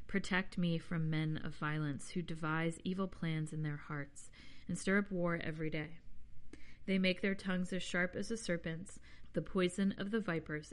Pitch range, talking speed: 155-180 Hz, 185 wpm